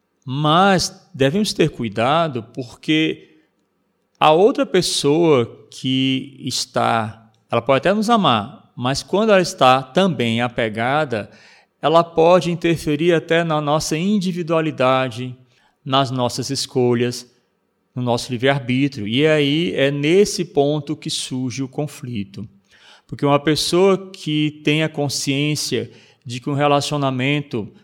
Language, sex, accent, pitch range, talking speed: Portuguese, male, Brazilian, 125-165 Hz, 115 wpm